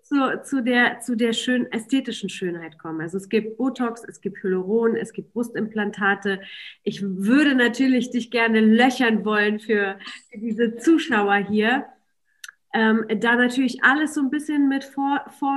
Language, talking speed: German, 160 wpm